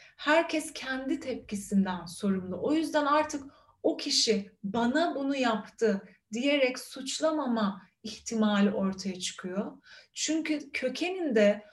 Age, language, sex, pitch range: 30-49, Turkish, female, 200-260 Hz